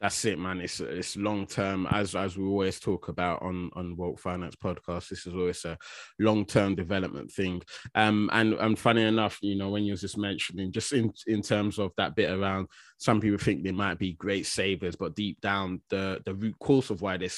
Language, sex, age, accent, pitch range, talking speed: English, male, 20-39, British, 95-110 Hz, 220 wpm